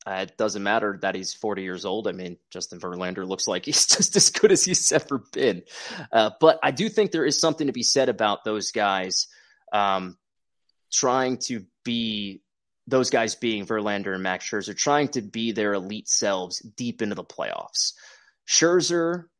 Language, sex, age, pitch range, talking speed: English, male, 20-39, 95-135 Hz, 185 wpm